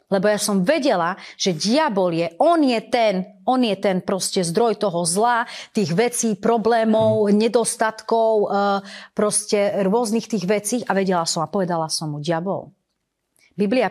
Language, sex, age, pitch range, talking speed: Slovak, female, 30-49, 200-275 Hz, 145 wpm